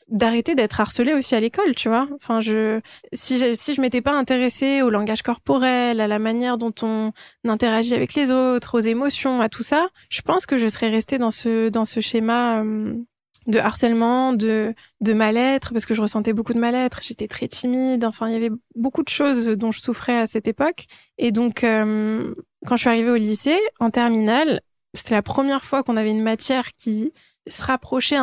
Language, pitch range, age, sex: French, 220-255 Hz, 20-39, female